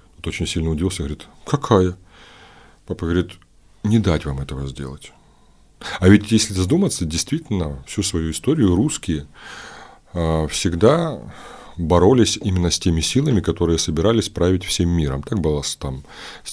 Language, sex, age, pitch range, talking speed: Russian, male, 30-49, 85-115 Hz, 140 wpm